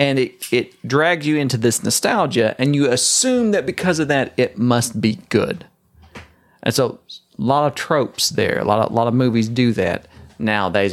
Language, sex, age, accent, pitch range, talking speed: English, male, 40-59, American, 115-150 Hz, 185 wpm